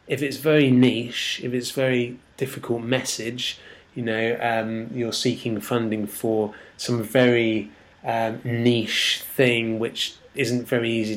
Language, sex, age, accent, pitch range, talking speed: English, male, 20-39, British, 110-130 Hz, 135 wpm